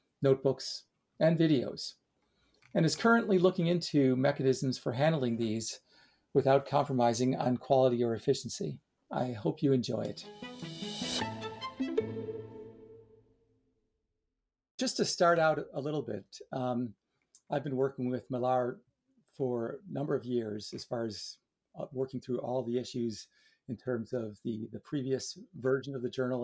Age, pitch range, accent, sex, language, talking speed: 40-59, 125-160 Hz, American, male, English, 135 wpm